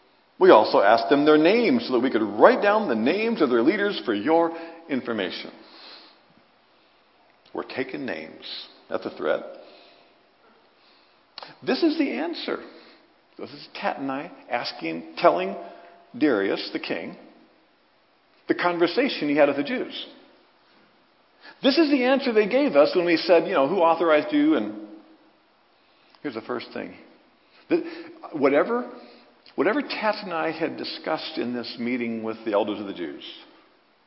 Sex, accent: male, American